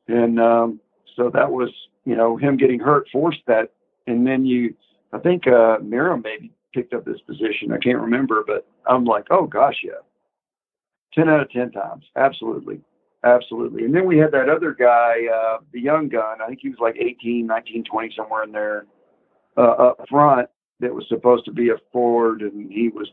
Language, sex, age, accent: English, male, 50-69, American